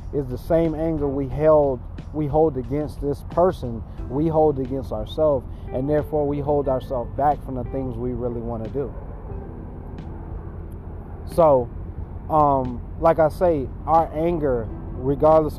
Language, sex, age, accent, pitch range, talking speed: English, male, 30-49, American, 95-150 Hz, 140 wpm